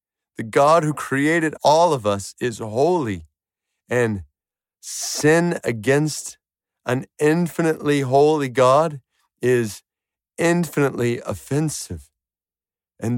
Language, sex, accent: English, male, American